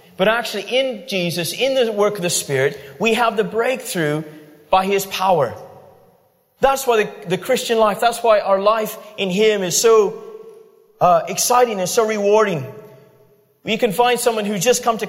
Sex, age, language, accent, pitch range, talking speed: male, 30-49, English, American, 180-230 Hz, 175 wpm